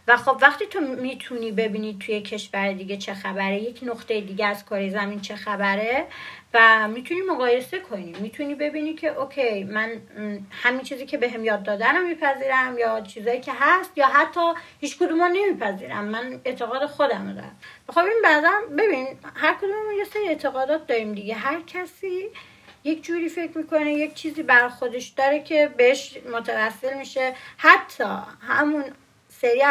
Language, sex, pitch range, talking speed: Persian, female, 230-320 Hz, 155 wpm